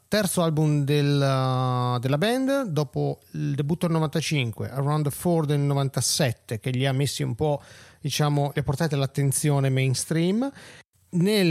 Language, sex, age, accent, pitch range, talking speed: Italian, male, 40-59, native, 125-155 Hz, 145 wpm